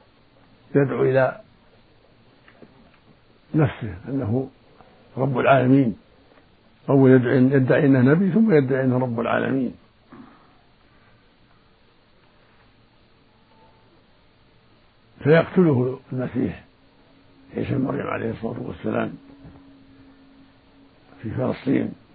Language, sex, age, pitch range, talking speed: Arabic, male, 60-79, 115-135 Hz, 70 wpm